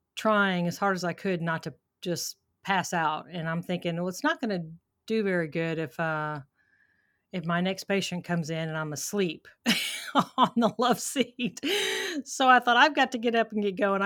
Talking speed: 205 wpm